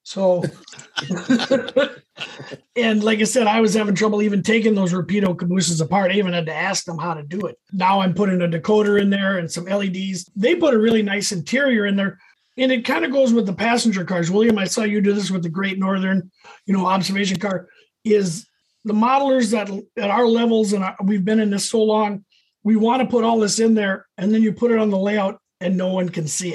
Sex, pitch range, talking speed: male, 190-225 Hz, 230 wpm